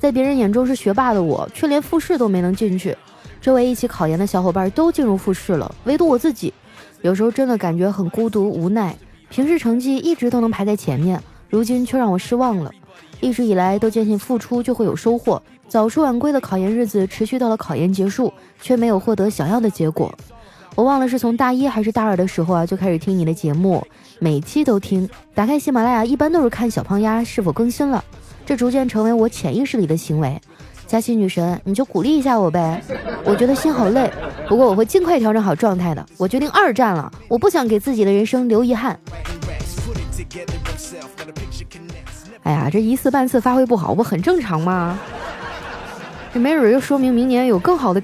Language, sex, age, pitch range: Chinese, female, 20-39, 185-250 Hz